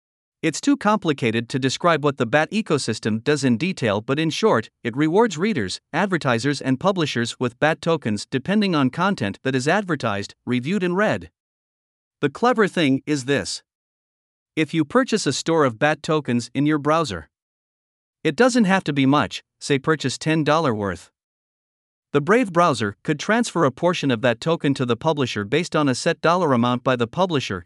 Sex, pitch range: male, 125-170 Hz